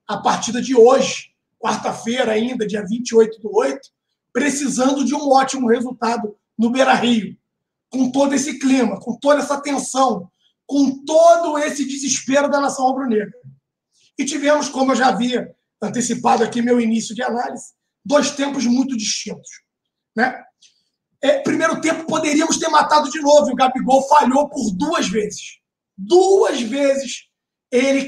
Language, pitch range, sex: Portuguese, 240-285 Hz, male